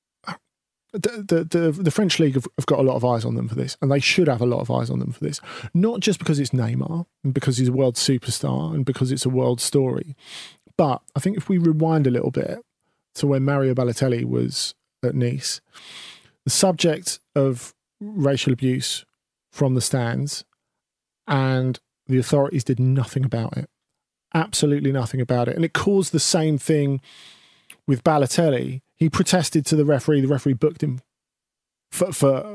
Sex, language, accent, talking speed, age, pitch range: male, English, British, 185 wpm, 40-59, 125-155 Hz